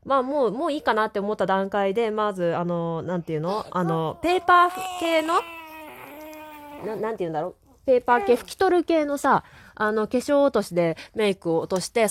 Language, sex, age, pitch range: Japanese, female, 20-39, 180-290 Hz